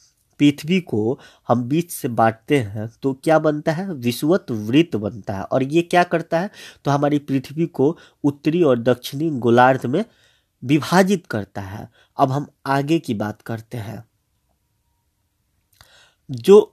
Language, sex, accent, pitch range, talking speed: Hindi, male, native, 120-165 Hz, 145 wpm